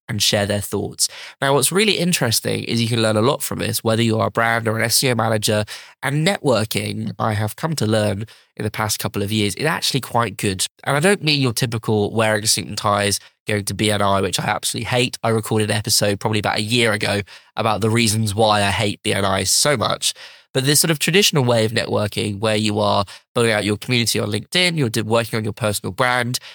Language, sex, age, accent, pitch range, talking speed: English, male, 20-39, British, 110-135 Hz, 230 wpm